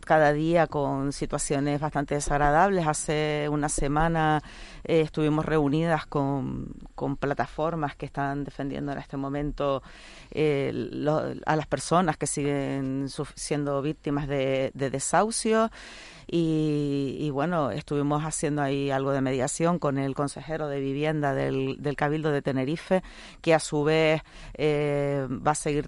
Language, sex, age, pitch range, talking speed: Spanish, female, 40-59, 140-160 Hz, 140 wpm